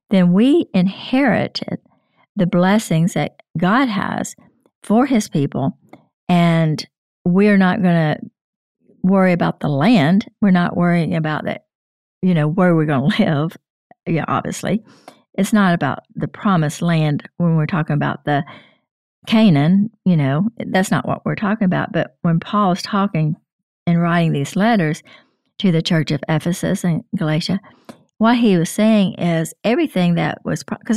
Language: English